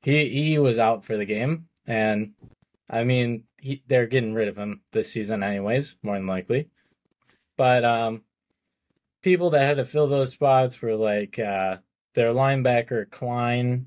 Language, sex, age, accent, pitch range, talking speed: English, male, 20-39, American, 110-135 Hz, 160 wpm